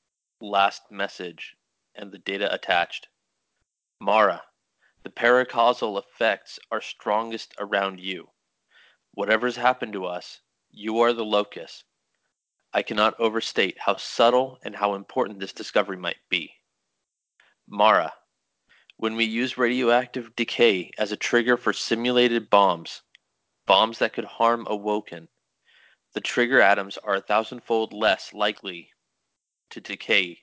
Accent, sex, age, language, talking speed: American, male, 30-49, English, 120 wpm